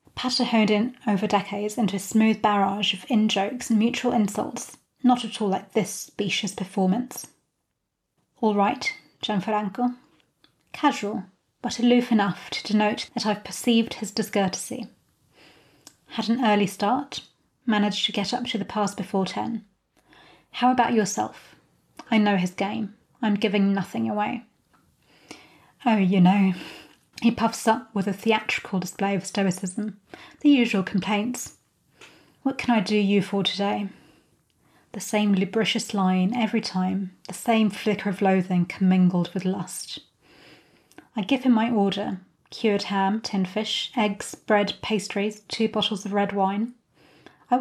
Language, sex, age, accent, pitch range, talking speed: English, female, 30-49, British, 195-225 Hz, 140 wpm